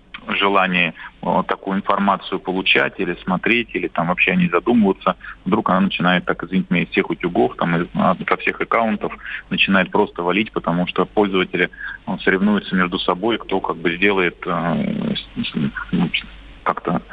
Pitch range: 90-100 Hz